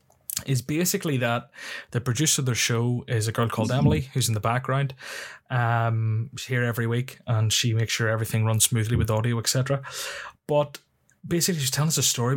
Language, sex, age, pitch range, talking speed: English, male, 20-39, 115-130 Hz, 190 wpm